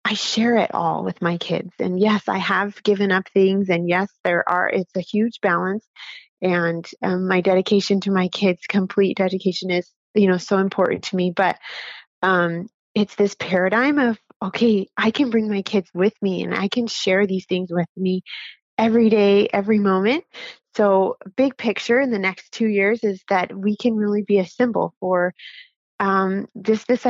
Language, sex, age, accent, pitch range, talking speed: English, female, 30-49, American, 185-215 Hz, 185 wpm